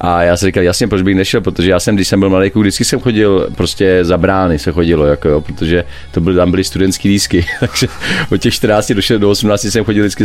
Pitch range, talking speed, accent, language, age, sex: 90-105 Hz, 245 wpm, native, Czech, 40-59, male